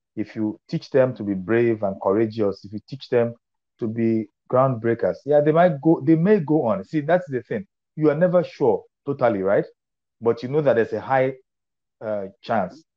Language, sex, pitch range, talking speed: English, male, 105-140 Hz, 200 wpm